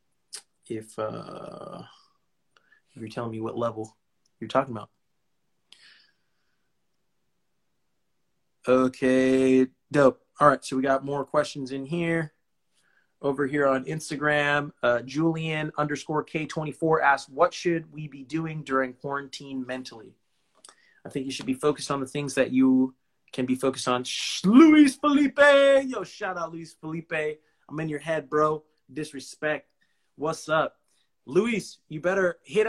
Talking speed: 130 wpm